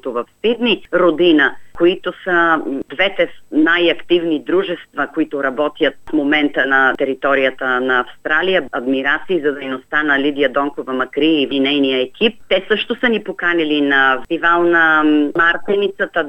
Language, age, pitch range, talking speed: Bulgarian, 30-49, 150-195 Hz, 130 wpm